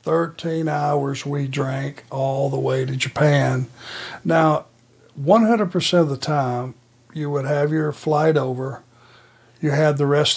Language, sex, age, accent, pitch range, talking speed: English, male, 60-79, American, 130-155 Hz, 145 wpm